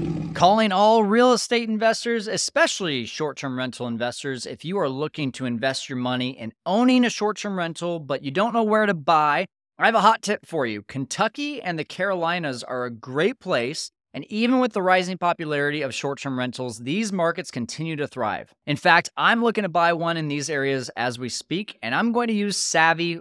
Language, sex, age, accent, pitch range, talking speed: English, male, 30-49, American, 140-200 Hz, 200 wpm